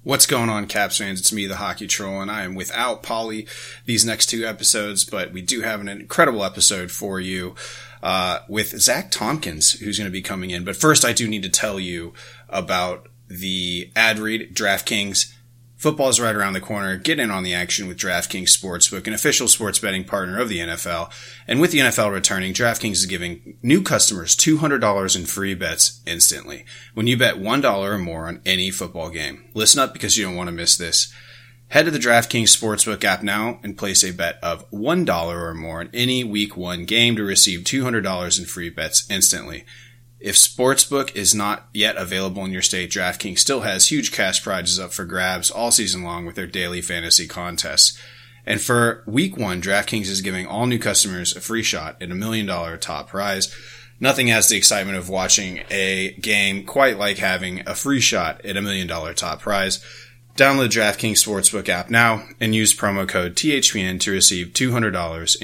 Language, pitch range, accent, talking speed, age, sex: English, 95-115 Hz, American, 195 wpm, 30-49, male